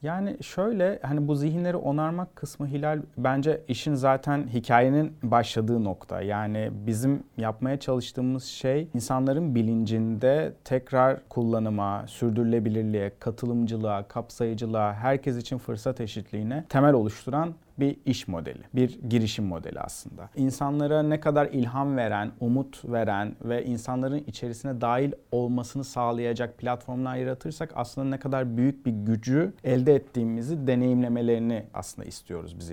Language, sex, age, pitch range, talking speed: Turkish, male, 40-59, 115-140 Hz, 120 wpm